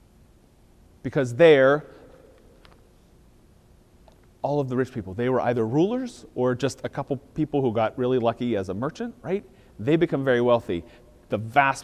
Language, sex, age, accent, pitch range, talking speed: English, male, 30-49, American, 110-130 Hz, 150 wpm